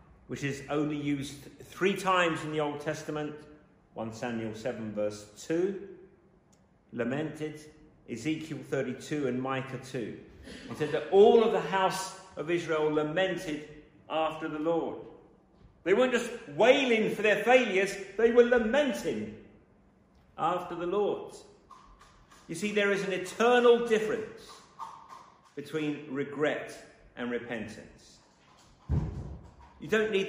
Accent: British